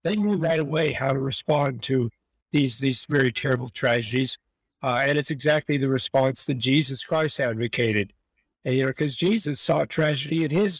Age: 50-69